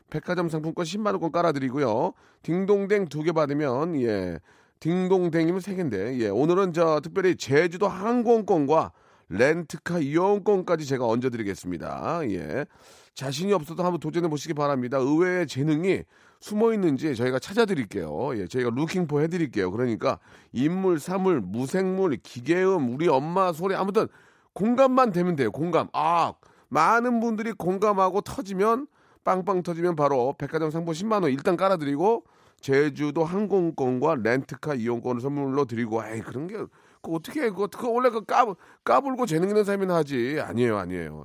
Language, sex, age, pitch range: Korean, male, 30-49, 135-195 Hz